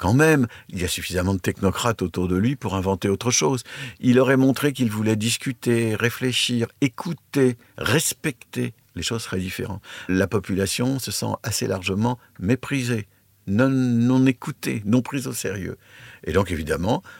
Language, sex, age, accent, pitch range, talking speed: French, male, 60-79, French, 95-120 Hz, 155 wpm